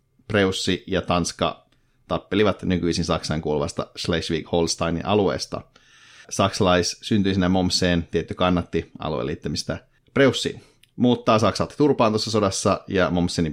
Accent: native